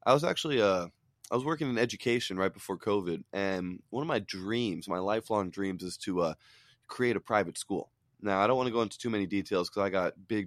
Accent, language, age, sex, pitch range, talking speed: American, English, 20-39, male, 90-110 Hz, 235 wpm